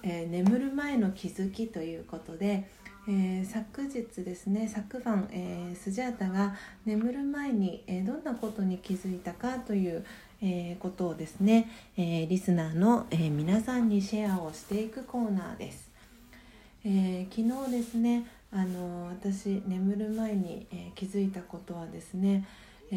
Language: Japanese